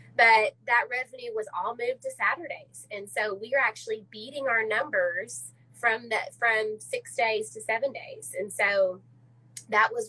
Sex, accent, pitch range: female, American, 195-265 Hz